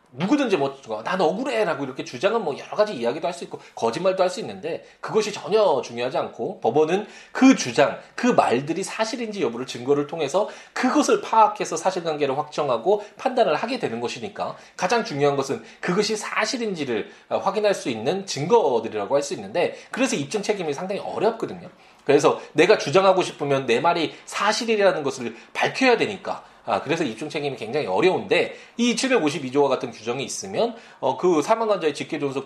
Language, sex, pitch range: Korean, male, 145-225 Hz